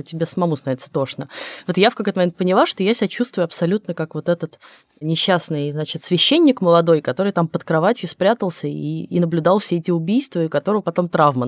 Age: 20-39